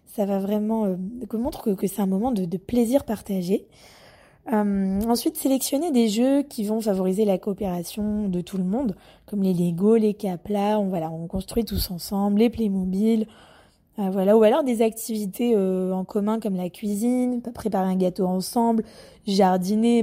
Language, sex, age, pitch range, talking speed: French, female, 20-39, 190-230 Hz, 175 wpm